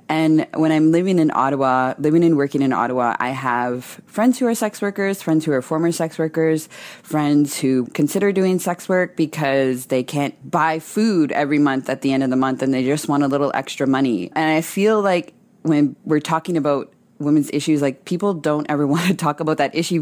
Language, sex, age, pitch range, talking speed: English, female, 20-39, 135-165 Hz, 215 wpm